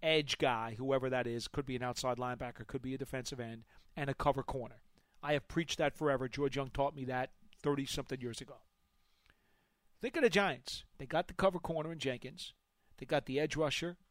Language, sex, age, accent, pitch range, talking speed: English, male, 40-59, American, 130-160 Hz, 205 wpm